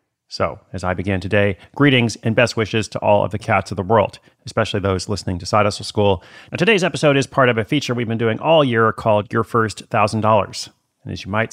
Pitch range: 100-120 Hz